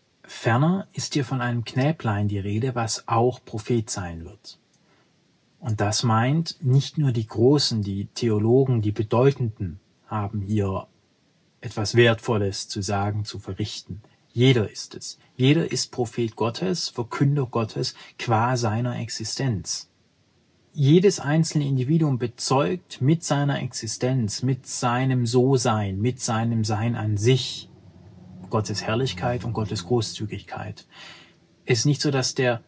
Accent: German